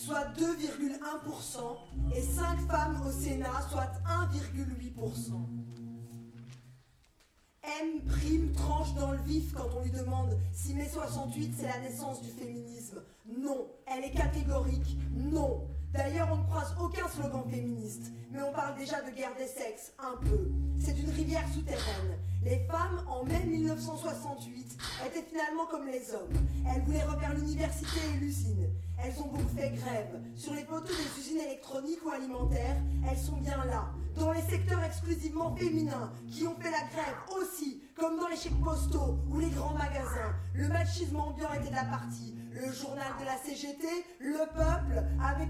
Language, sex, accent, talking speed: French, female, French, 160 wpm